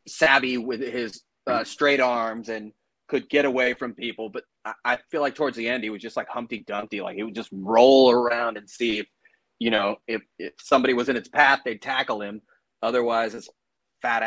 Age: 30-49